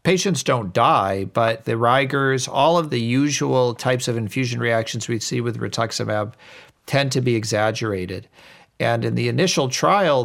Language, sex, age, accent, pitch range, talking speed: English, male, 50-69, American, 110-135 Hz, 160 wpm